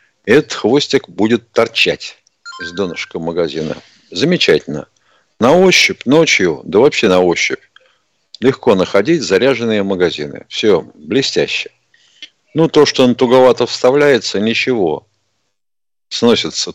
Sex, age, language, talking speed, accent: male, 50-69, Russian, 105 wpm, native